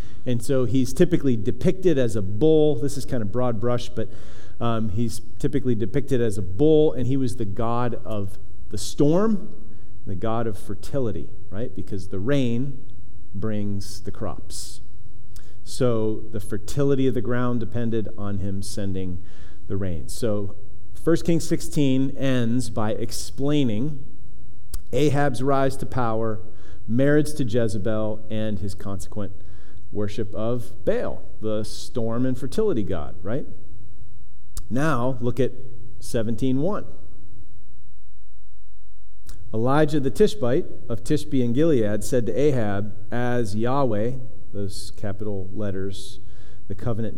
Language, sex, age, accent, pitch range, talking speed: English, male, 40-59, American, 100-130 Hz, 125 wpm